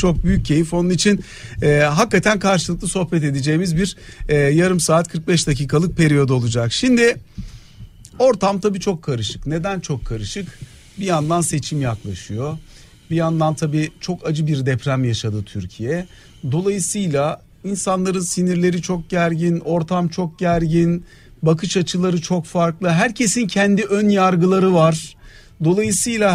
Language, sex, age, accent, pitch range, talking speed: Turkish, male, 50-69, native, 150-195 Hz, 130 wpm